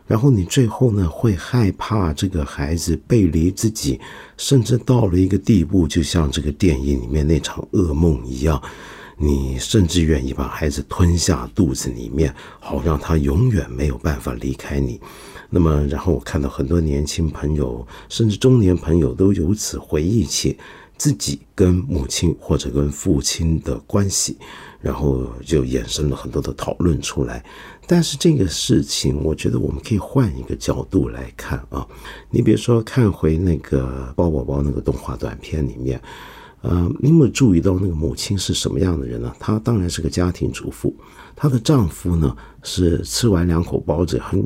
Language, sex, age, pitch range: Chinese, male, 50-69, 70-95 Hz